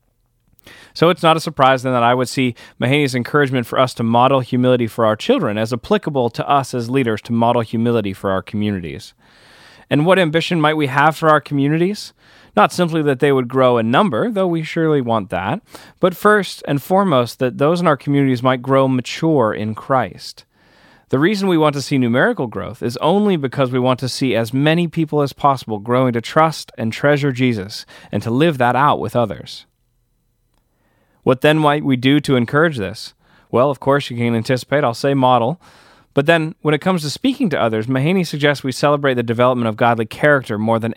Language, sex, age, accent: English, male, 30-49, American